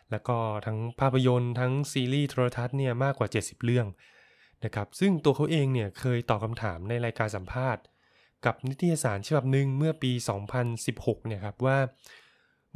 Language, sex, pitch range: Thai, male, 110-135 Hz